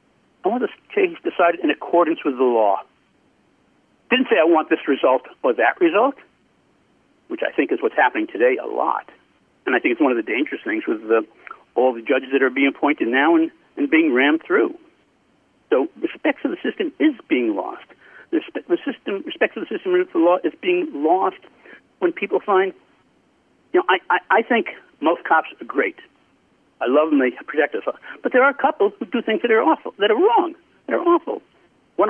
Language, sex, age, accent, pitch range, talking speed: English, male, 60-79, American, 230-365 Hz, 205 wpm